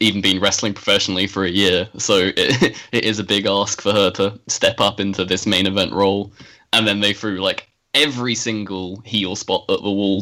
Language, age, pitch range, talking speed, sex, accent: English, 10-29, 95-110 Hz, 210 wpm, male, British